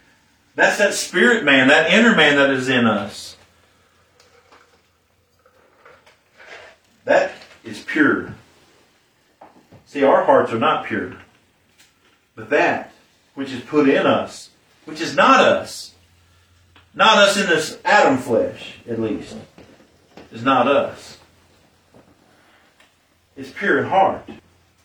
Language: English